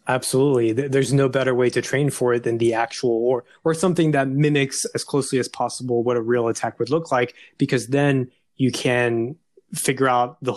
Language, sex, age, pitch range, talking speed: English, male, 20-39, 125-145 Hz, 200 wpm